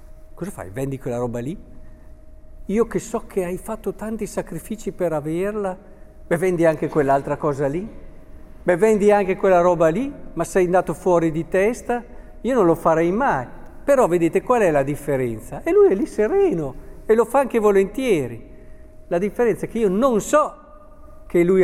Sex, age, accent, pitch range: male, 50-69, native, 140-200 Hz